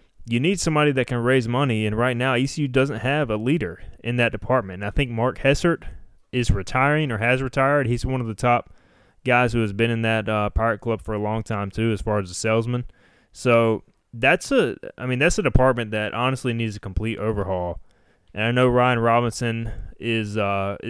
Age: 20-39